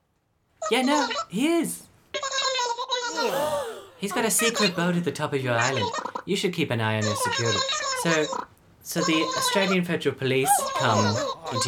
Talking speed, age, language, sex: 160 wpm, 30-49, English, male